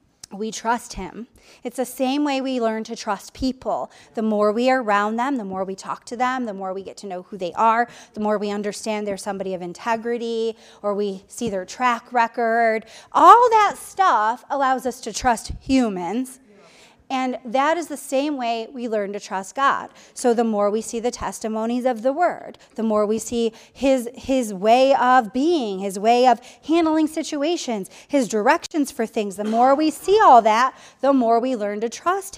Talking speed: 195 wpm